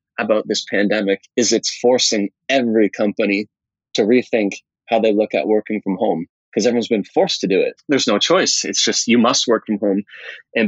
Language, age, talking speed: English, 20-39, 195 wpm